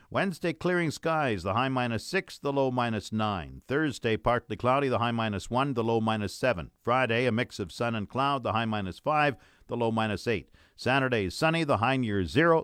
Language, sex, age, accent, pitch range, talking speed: English, male, 50-69, American, 110-145 Hz, 205 wpm